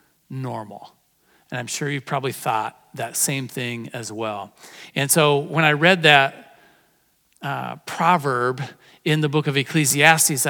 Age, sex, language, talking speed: 40-59, male, English, 145 wpm